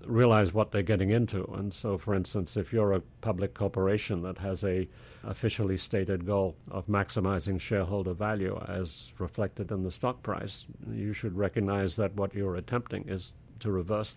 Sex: male